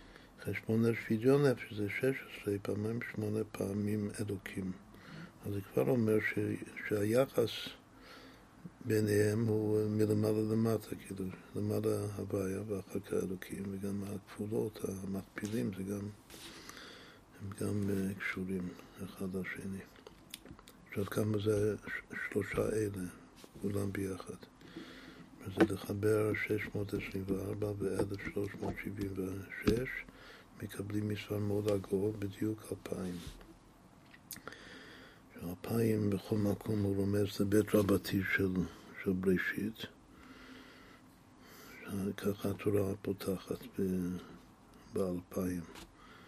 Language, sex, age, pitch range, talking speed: Hebrew, male, 60-79, 95-105 Hz, 85 wpm